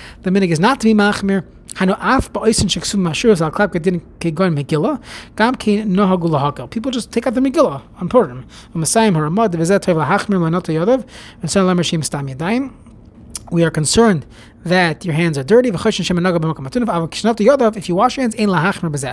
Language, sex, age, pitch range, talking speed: English, male, 30-49, 160-205 Hz, 90 wpm